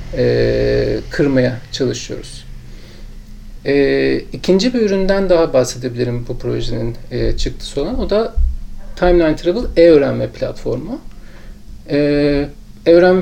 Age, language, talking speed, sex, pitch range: 40-59, Turkish, 80 wpm, male, 125-170 Hz